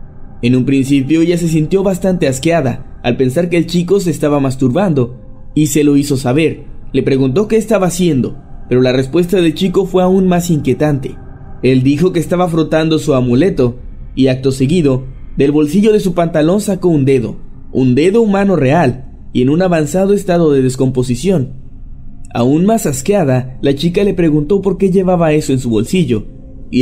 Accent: Mexican